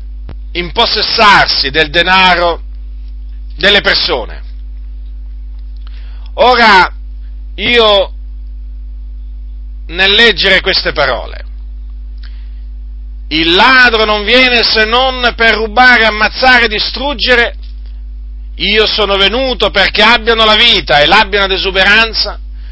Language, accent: Italian, native